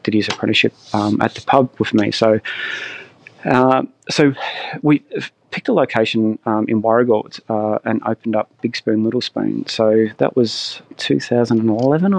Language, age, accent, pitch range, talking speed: English, 20-39, Australian, 110-125 Hz, 150 wpm